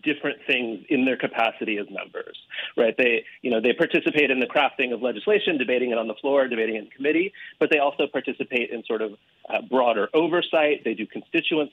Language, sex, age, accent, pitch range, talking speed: English, male, 30-49, American, 115-155 Hz, 200 wpm